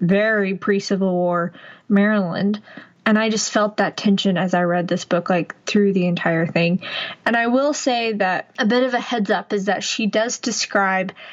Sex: female